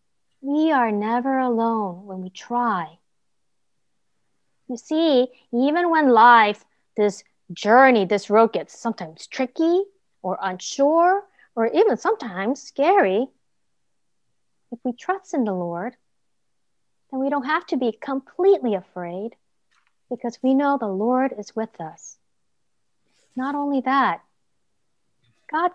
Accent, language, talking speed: American, English, 120 wpm